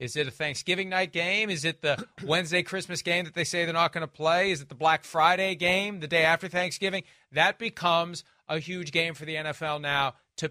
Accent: American